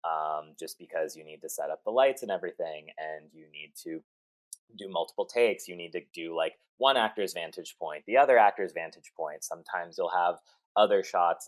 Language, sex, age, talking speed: English, male, 30-49, 200 wpm